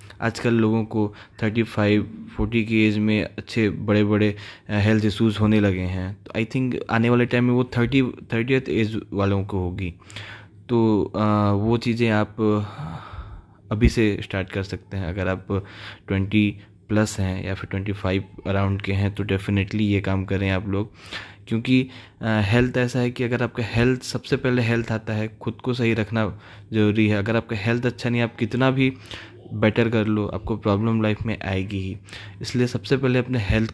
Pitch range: 100-115 Hz